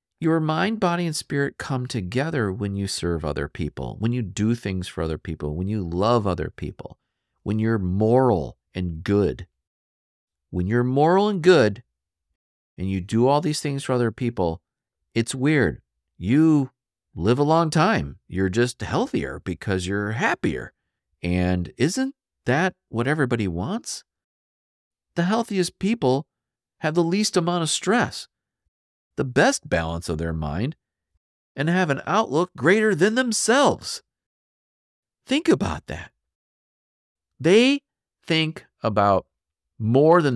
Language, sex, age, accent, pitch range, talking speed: English, male, 50-69, American, 85-135 Hz, 135 wpm